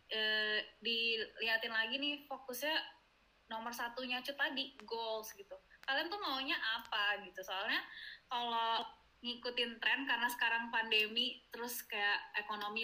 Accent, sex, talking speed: native, female, 120 wpm